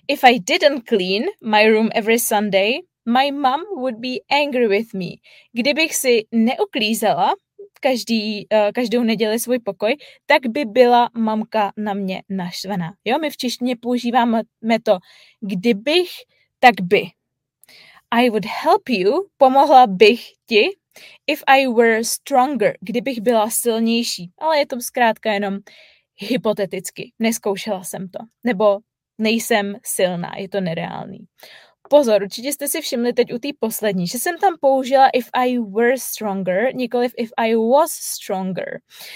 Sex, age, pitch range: female, 20-39, 215-270 Hz